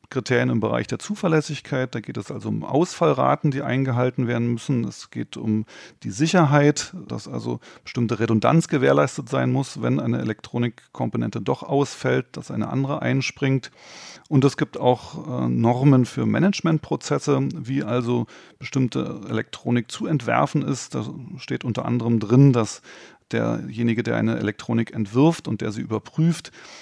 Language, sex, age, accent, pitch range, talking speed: German, male, 30-49, German, 115-150 Hz, 150 wpm